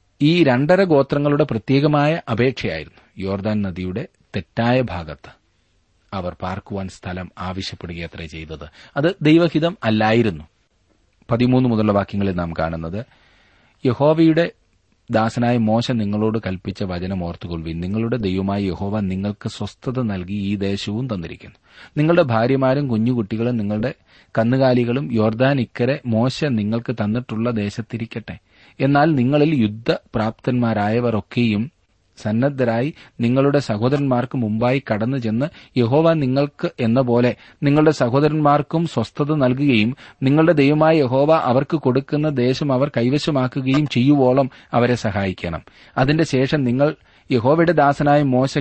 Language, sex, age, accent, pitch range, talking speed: Malayalam, male, 40-59, native, 105-140 Hz, 100 wpm